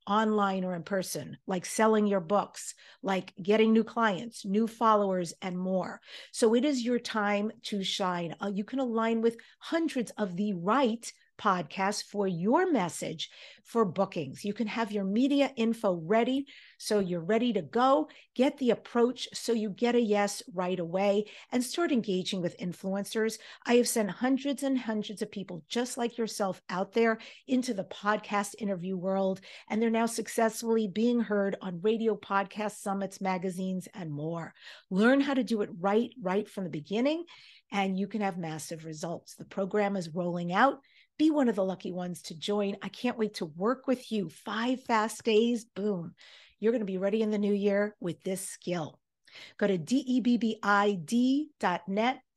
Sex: female